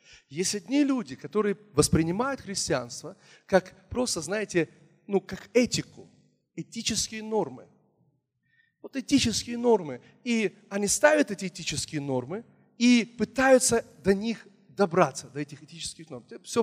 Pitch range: 160-230 Hz